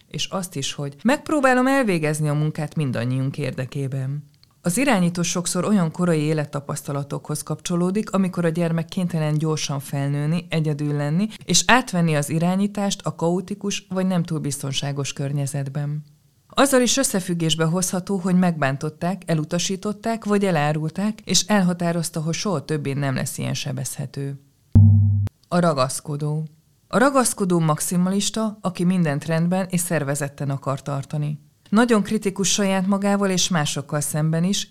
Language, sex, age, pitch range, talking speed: Hungarian, female, 20-39, 145-185 Hz, 130 wpm